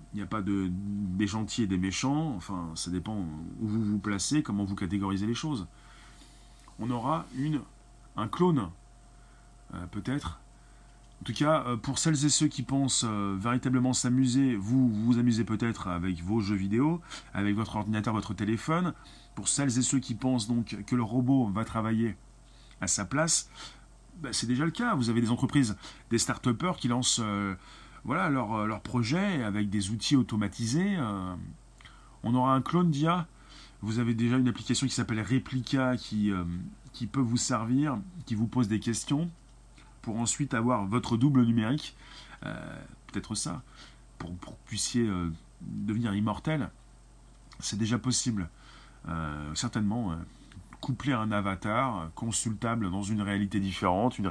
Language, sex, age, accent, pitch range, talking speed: French, male, 30-49, French, 100-130 Hz, 165 wpm